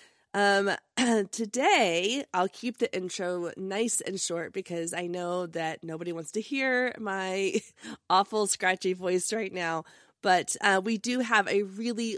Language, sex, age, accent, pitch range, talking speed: English, female, 20-39, American, 170-220 Hz, 150 wpm